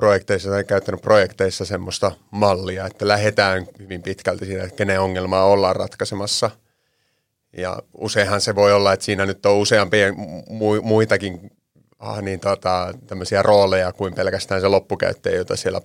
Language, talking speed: Finnish, 135 wpm